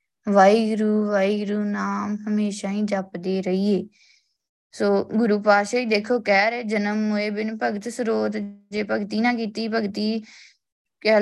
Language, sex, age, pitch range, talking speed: Punjabi, female, 20-39, 205-245 Hz, 135 wpm